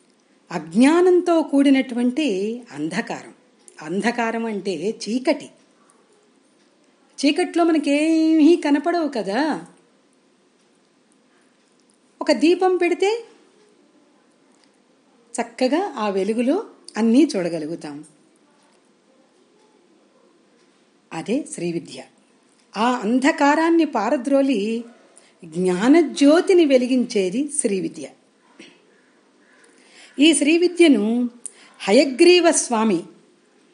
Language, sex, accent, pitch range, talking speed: Telugu, female, native, 220-310 Hz, 55 wpm